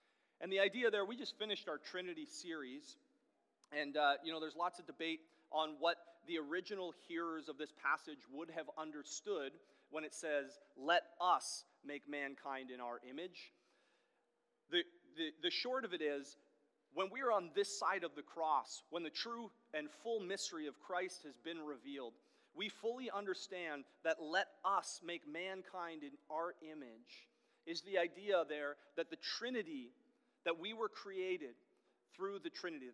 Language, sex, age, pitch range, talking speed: English, male, 30-49, 155-215 Hz, 165 wpm